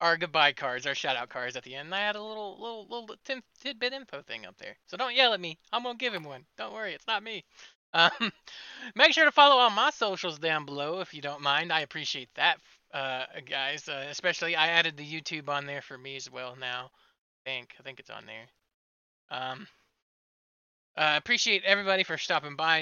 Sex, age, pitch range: male, 20-39, 135-195 Hz